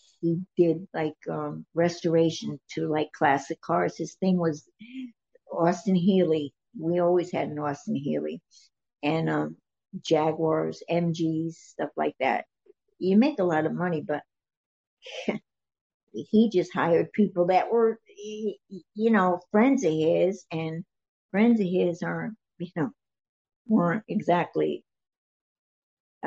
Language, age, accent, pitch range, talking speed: English, 60-79, American, 155-190 Hz, 125 wpm